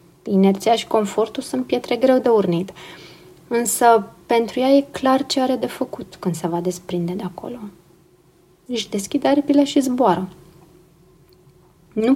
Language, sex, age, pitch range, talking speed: Romanian, female, 20-39, 185-225 Hz, 145 wpm